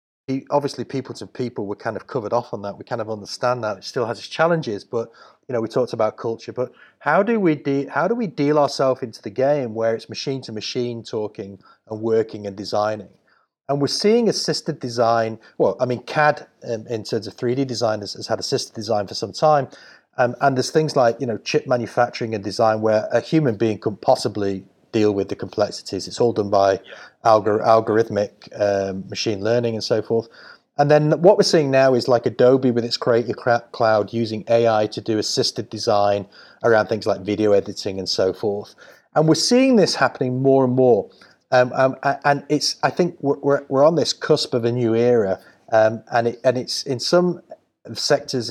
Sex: male